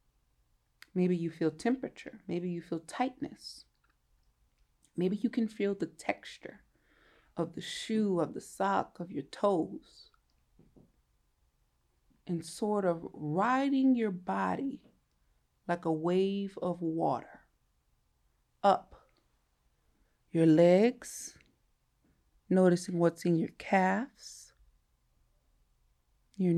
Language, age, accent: English, 30-49, American